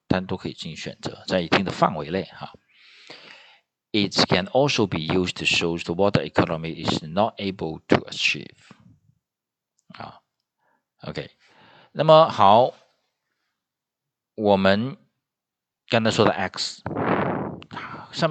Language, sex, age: Chinese, male, 50-69